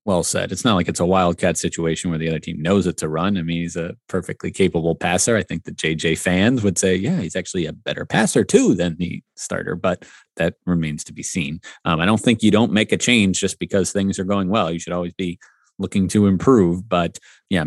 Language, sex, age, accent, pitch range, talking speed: English, male, 30-49, American, 85-105 Hz, 240 wpm